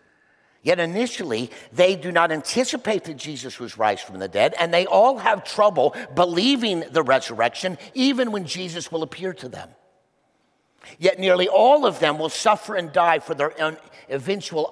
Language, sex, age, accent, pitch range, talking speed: English, male, 50-69, American, 130-180 Hz, 165 wpm